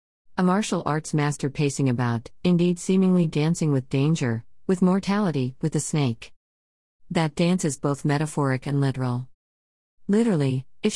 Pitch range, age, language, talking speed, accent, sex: 130-170 Hz, 50-69, English, 135 wpm, American, female